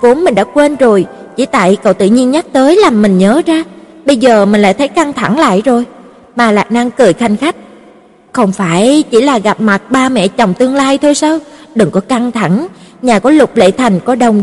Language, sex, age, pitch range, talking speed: Vietnamese, female, 20-39, 210-280 Hz, 230 wpm